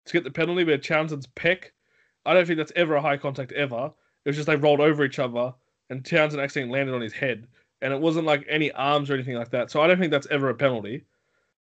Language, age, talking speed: English, 20-39, 255 wpm